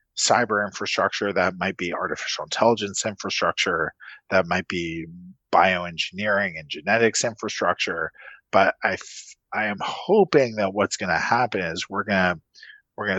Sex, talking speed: male, 140 wpm